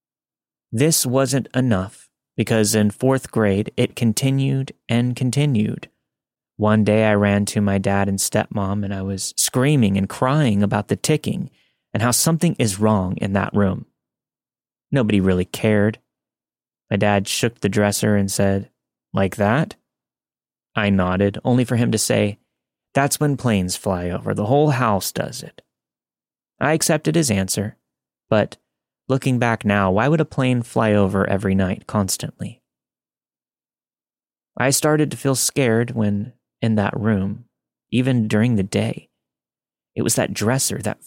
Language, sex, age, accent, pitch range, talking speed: English, male, 30-49, American, 100-125 Hz, 150 wpm